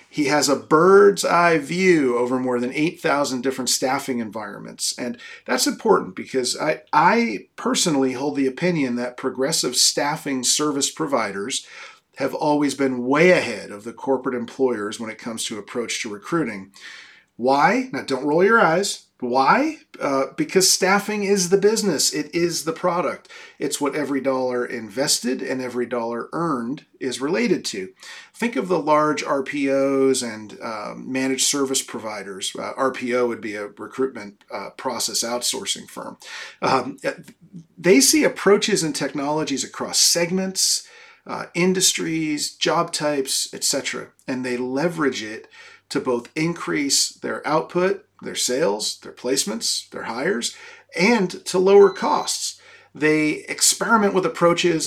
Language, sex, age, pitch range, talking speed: English, male, 40-59, 130-175 Hz, 140 wpm